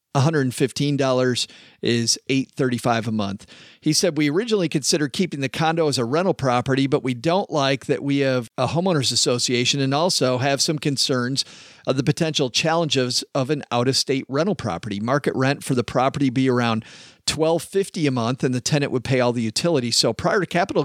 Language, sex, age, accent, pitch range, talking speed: English, male, 40-59, American, 125-155 Hz, 180 wpm